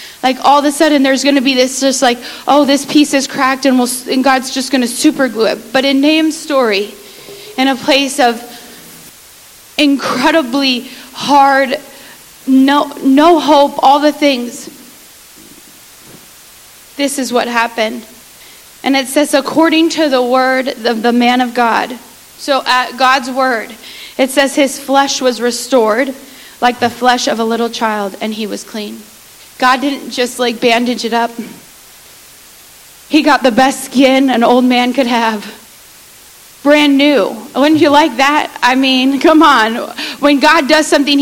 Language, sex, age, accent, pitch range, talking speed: English, female, 30-49, American, 245-295 Hz, 160 wpm